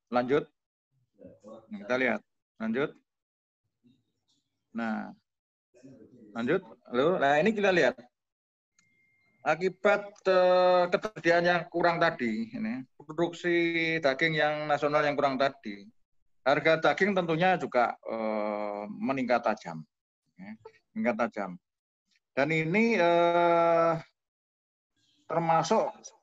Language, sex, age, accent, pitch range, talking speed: Indonesian, male, 30-49, native, 110-175 Hz, 90 wpm